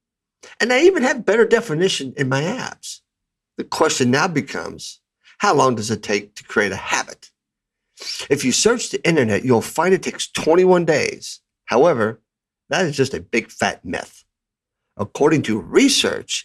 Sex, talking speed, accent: male, 160 wpm, American